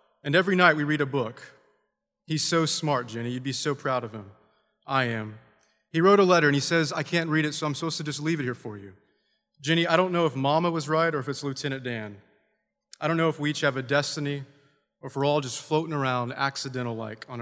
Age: 30-49